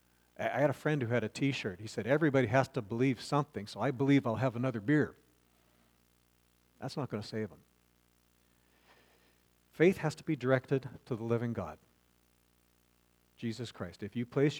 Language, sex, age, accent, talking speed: English, male, 50-69, American, 175 wpm